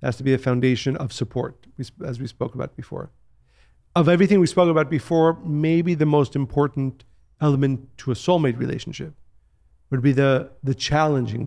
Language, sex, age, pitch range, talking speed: English, male, 50-69, 120-150 Hz, 165 wpm